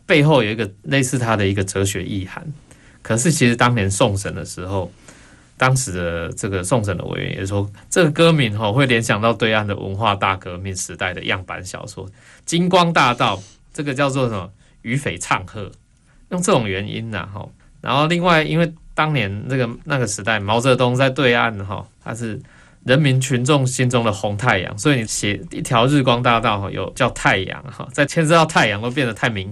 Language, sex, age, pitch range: Chinese, male, 20-39, 100-135 Hz